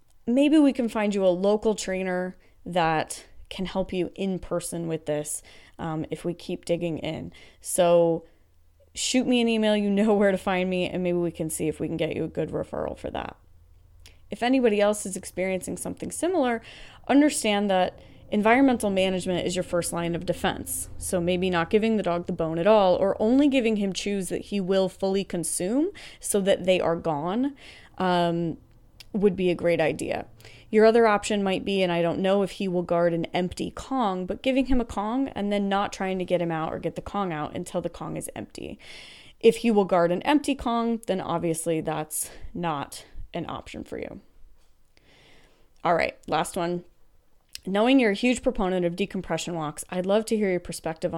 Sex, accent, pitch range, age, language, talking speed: female, American, 170-210 Hz, 20-39, English, 195 wpm